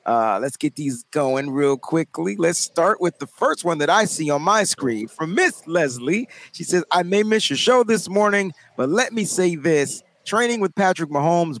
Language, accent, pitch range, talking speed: English, American, 155-195 Hz, 200 wpm